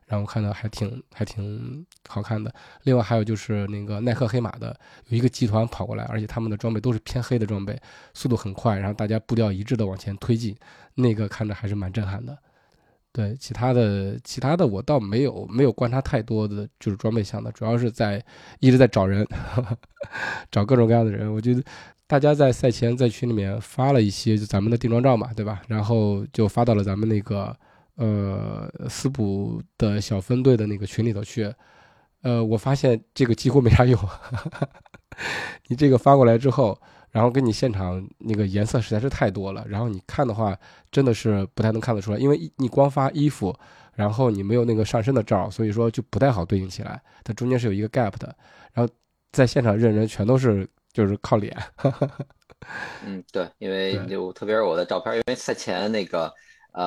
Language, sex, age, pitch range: Chinese, male, 20-39, 105-125 Hz